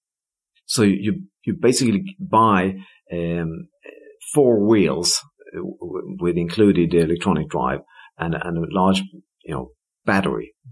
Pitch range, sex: 85-135 Hz, male